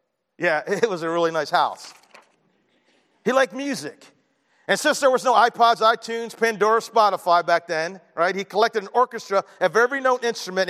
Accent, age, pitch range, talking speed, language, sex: American, 40-59, 185-250 Hz, 170 wpm, English, male